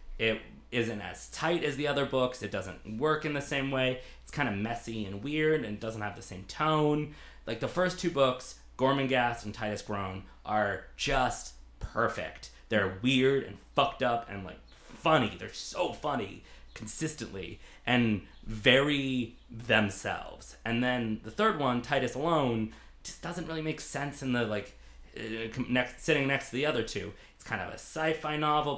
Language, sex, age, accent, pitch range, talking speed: English, male, 30-49, American, 105-140 Hz, 170 wpm